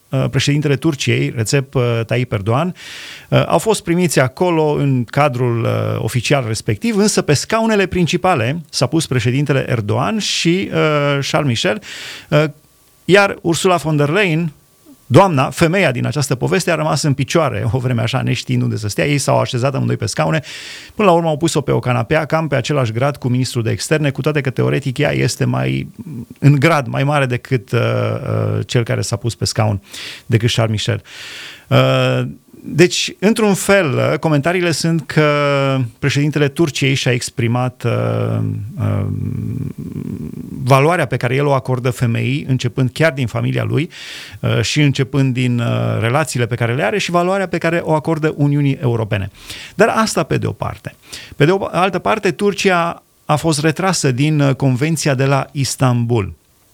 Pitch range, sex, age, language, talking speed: 120-155 Hz, male, 30-49, Romanian, 160 wpm